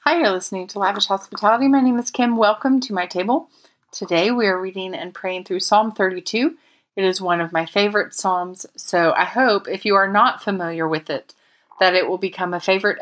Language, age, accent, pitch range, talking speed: English, 30-49, American, 175-210 Hz, 210 wpm